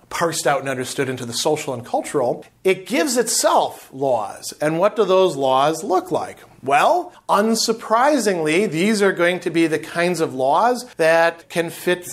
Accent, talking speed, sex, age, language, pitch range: American, 170 wpm, male, 40-59, English, 150-195 Hz